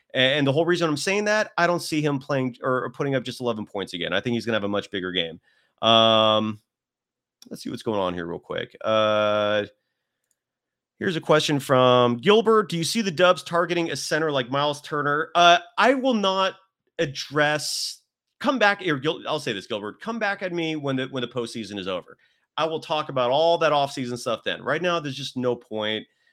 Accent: American